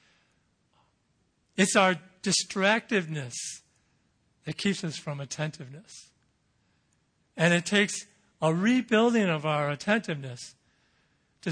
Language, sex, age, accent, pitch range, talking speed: English, male, 50-69, American, 145-200 Hz, 90 wpm